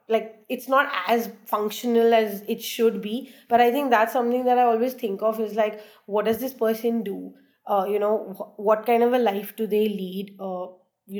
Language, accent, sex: English, Indian, female